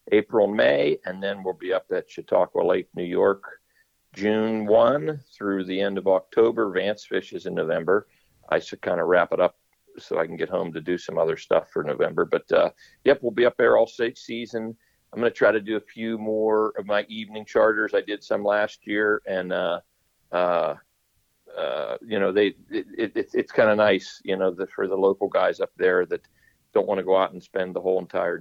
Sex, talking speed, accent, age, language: male, 220 wpm, American, 50-69, English